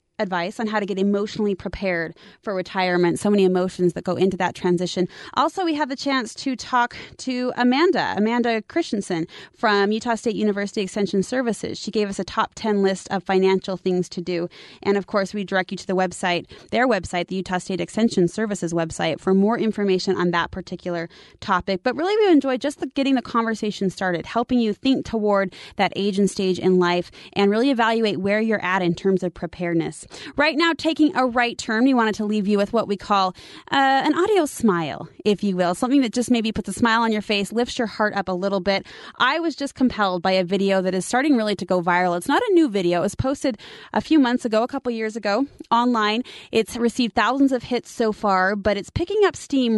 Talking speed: 220 wpm